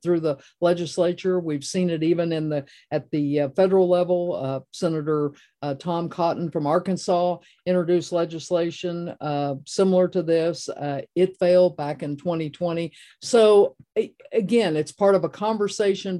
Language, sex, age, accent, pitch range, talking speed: English, female, 50-69, American, 155-185 Hz, 145 wpm